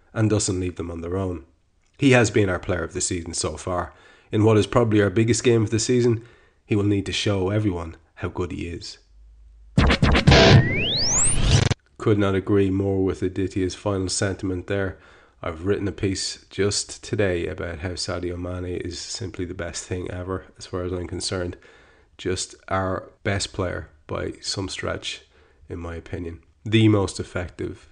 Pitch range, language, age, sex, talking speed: 90-100 Hz, English, 30-49, male, 170 wpm